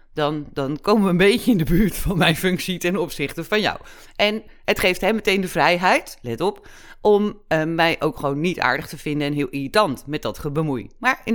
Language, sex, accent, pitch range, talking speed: Dutch, female, Dutch, 155-210 Hz, 220 wpm